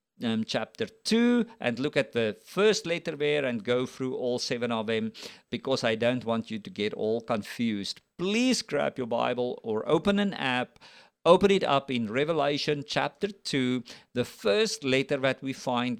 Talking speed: 175 wpm